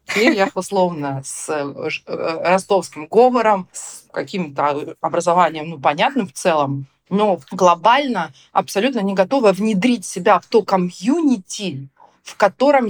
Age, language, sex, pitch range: 40-59, Russian, female, 170-220 Hz